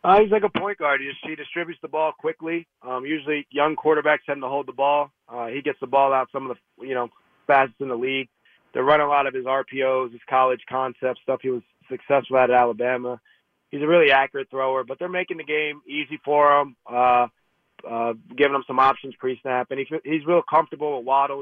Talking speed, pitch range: 225 wpm, 120-140 Hz